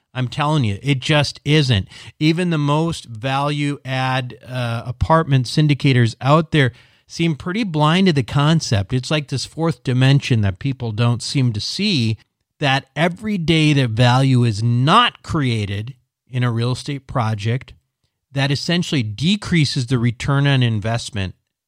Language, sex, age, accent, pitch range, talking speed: English, male, 40-59, American, 120-145 Hz, 140 wpm